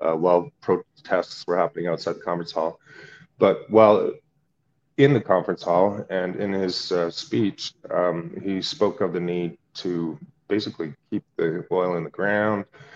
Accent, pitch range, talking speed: American, 85-105 Hz, 155 wpm